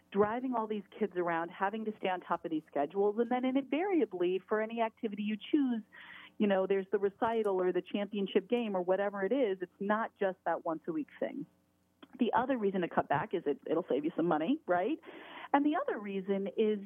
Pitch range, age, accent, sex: 175-235 Hz, 40-59, American, female